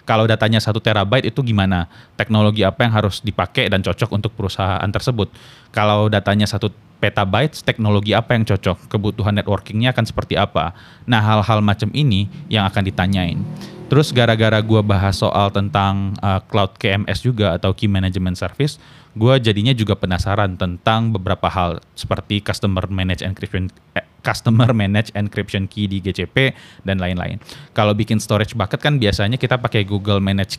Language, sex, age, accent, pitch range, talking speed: Indonesian, male, 20-39, native, 95-115 Hz, 155 wpm